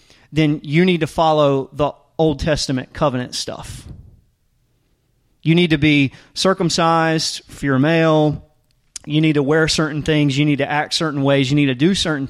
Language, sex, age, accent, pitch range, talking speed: English, male, 30-49, American, 135-180 Hz, 175 wpm